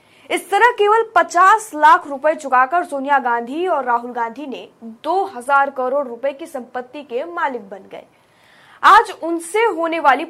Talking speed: 155 wpm